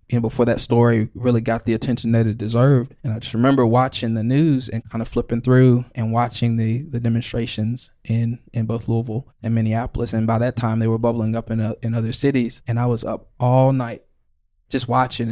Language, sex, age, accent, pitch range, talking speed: English, male, 20-39, American, 115-130 Hz, 220 wpm